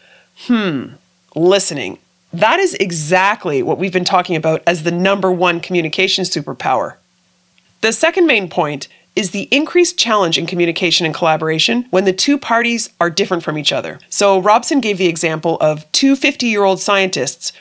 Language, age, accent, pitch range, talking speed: English, 30-49, American, 170-230 Hz, 155 wpm